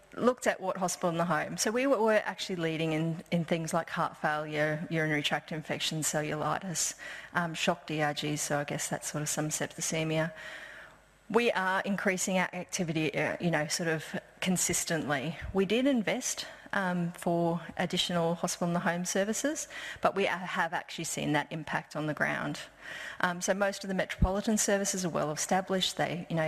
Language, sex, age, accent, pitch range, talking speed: English, female, 30-49, Australian, 155-195 Hz, 175 wpm